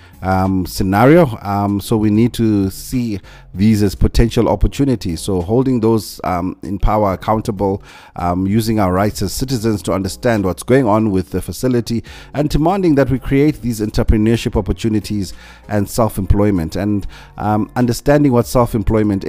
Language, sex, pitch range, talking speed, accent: English, male, 95-120 Hz, 150 wpm, South African